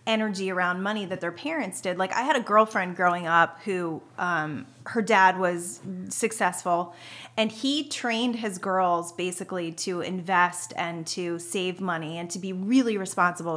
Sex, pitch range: female, 175-220 Hz